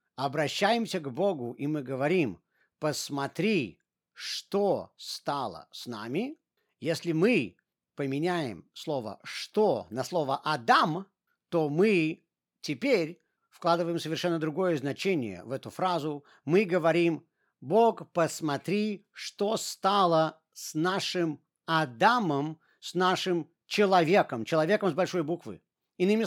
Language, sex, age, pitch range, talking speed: Russian, male, 50-69, 155-210 Hz, 105 wpm